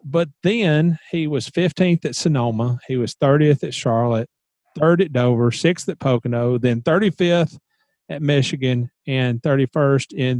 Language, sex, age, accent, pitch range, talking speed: English, male, 40-59, American, 115-155 Hz, 145 wpm